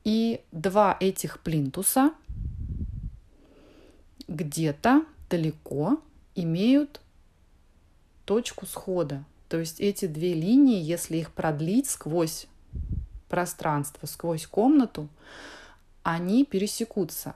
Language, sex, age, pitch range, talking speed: Russian, female, 30-49, 150-215 Hz, 80 wpm